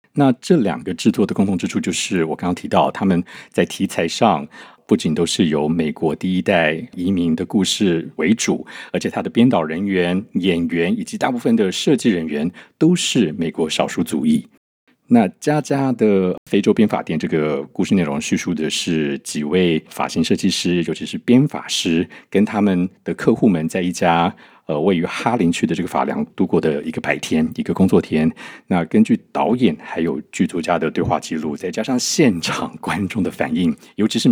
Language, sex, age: Chinese, male, 50-69